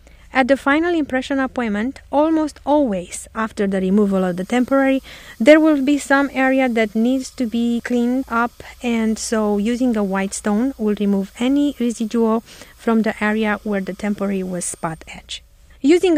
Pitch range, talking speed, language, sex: 205-260 Hz, 165 wpm, English, female